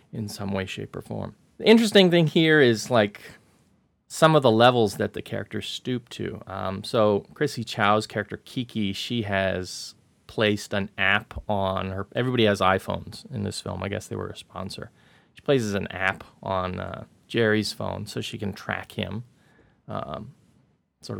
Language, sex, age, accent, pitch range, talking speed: English, male, 30-49, American, 100-125 Hz, 175 wpm